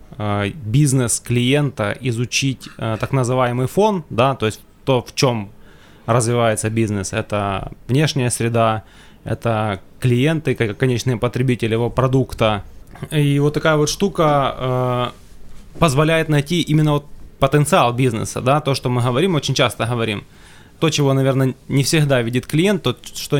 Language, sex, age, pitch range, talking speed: Ukrainian, male, 20-39, 110-140 Hz, 135 wpm